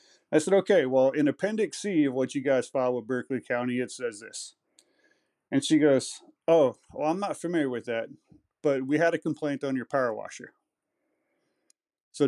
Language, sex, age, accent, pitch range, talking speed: English, male, 30-49, American, 125-175 Hz, 185 wpm